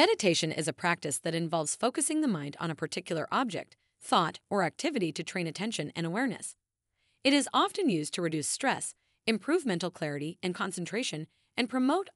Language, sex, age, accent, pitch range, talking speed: English, female, 30-49, American, 160-245 Hz, 175 wpm